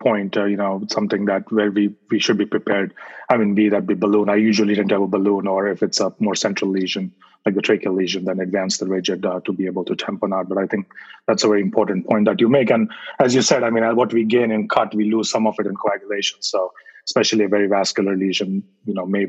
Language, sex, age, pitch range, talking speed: English, male, 30-49, 100-110 Hz, 265 wpm